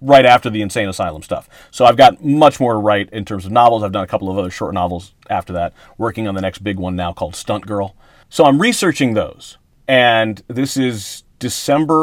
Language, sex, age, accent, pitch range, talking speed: English, male, 40-59, American, 100-135 Hz, 225 wpm